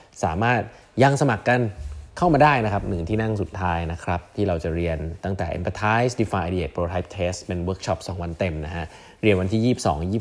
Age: 20-39